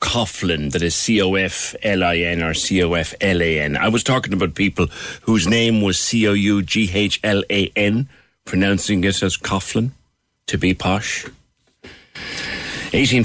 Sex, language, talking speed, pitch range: male, English, 105 wpm, 90-125 Hz